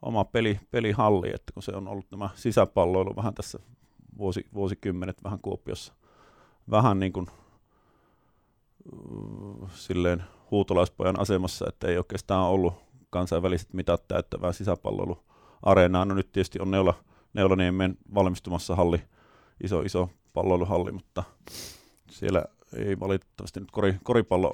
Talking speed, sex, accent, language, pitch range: 115 wpm, male, native, Finnish, 90-105 Hz